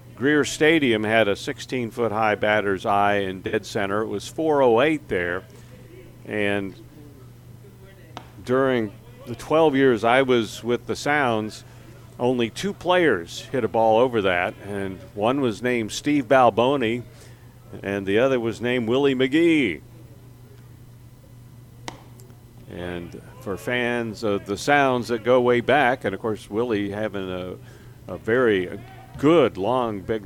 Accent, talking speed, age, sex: American, 135 wpm, 50-69, male